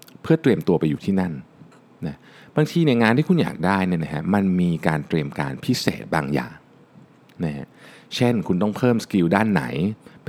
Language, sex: Thai, male